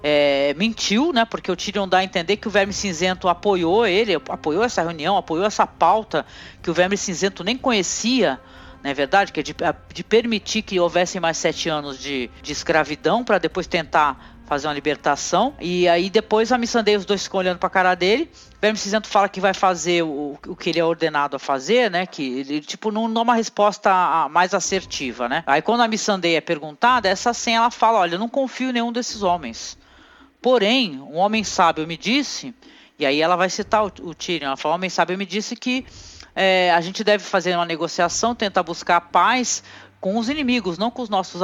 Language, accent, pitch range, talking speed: Portuguese, Brazilian, 165-225 Hz, 205 wpm